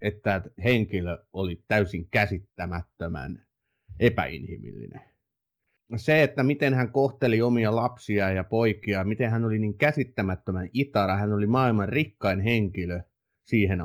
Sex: male